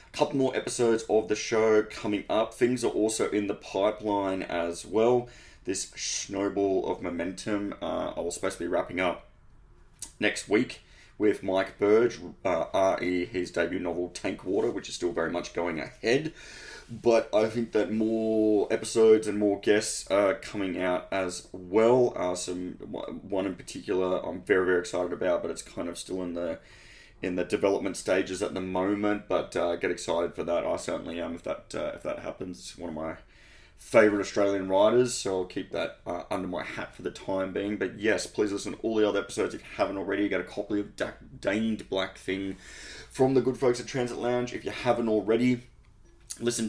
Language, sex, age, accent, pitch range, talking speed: English, male, 20-39, Australian, 95-110 Hz, 195 wpm